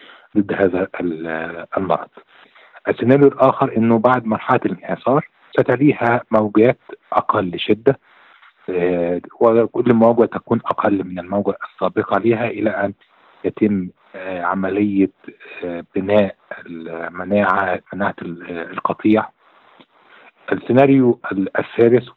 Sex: male